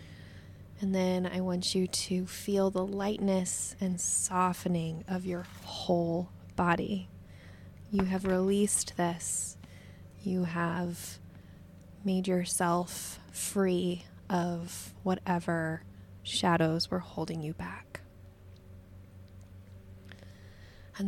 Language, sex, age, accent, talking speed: English, female, 20-39, American, 90 wpm